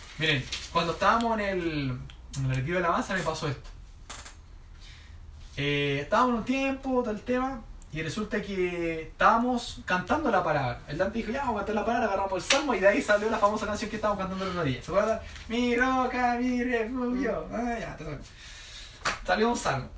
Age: 20-39